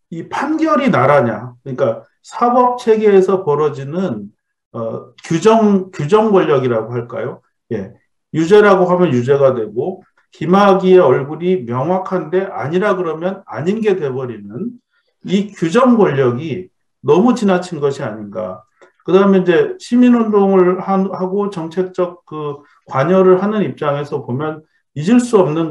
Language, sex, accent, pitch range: Korean, male, native, 150-210 Hz